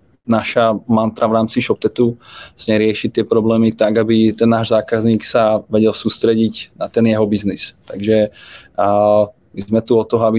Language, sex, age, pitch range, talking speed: Czech, male, 20-39, 105-115 Hz, 155 wpm